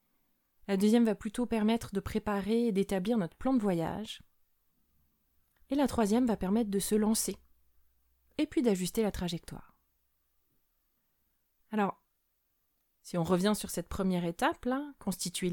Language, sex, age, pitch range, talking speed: French, female, 30-49, 180-230 Hz, 135 wpm